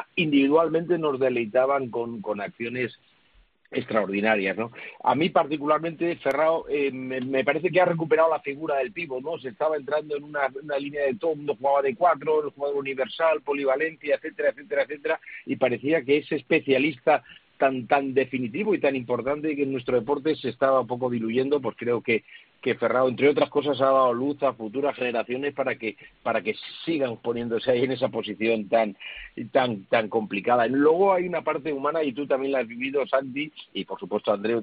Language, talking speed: Spanish, 185 wpm